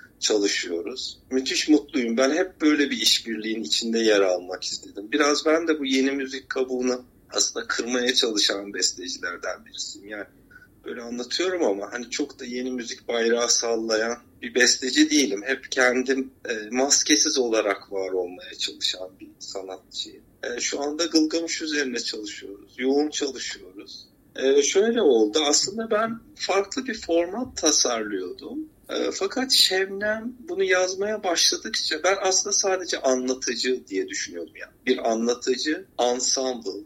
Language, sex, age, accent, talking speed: Turkish, male, 50-69, native, 130 wpm